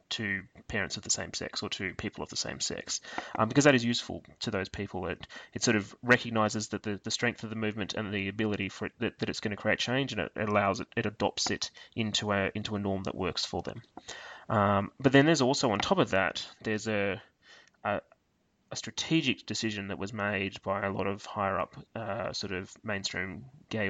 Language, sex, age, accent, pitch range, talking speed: English, male, 20-39, Australian, 100-110 Hz, 230 wpm